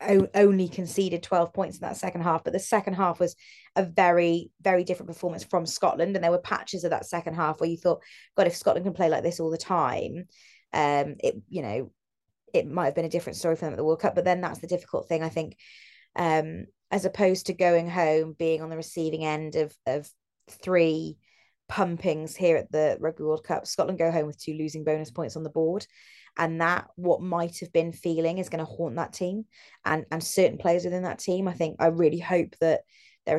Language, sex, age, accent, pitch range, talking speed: English, female, 20-39, British, 160-180 Hz, 225 wpm